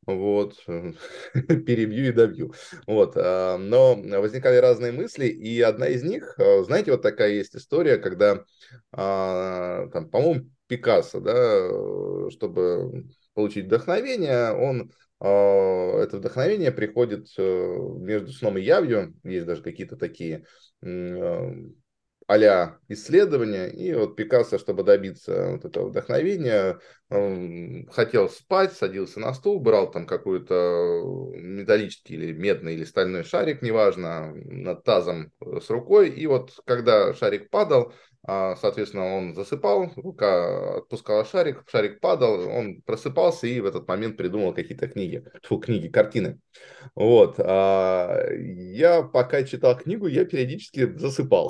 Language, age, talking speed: Russian, 20-39, 115 wpm